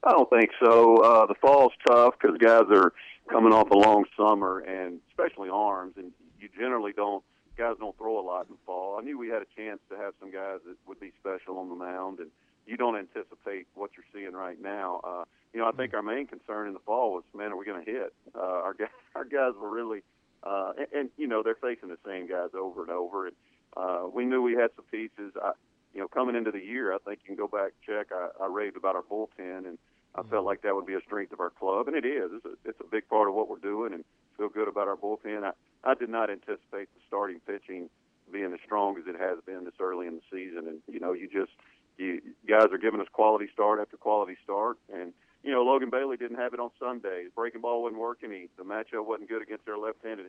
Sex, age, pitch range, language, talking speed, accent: male, 40-59, 95-120 Hz, English, 255 wpm, American